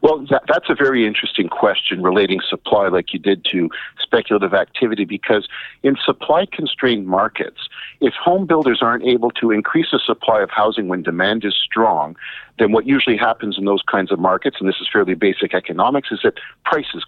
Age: 50-69